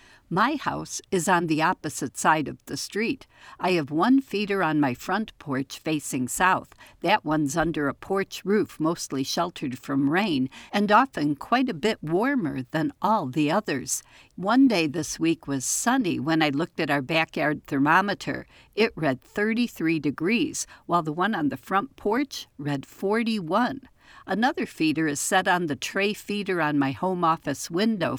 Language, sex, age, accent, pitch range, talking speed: English, female, 60-79, American, 150-215 Hz, 170 wpm